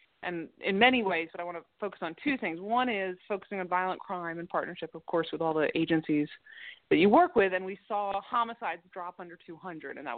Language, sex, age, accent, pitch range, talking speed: English, female, 30-49, American, 160-205 Hz, 230 wpm